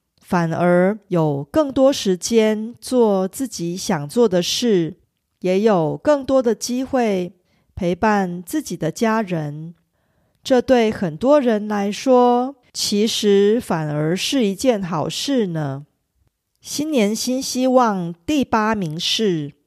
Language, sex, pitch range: Korean, female, 180-250 Hz